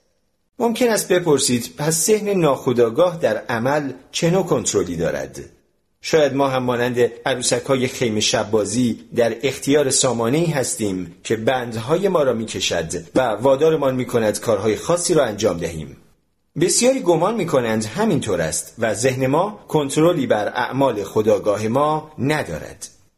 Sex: male